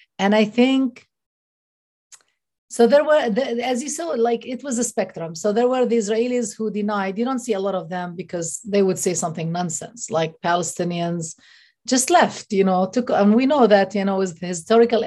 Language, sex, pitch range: English, female, 185-240 Hz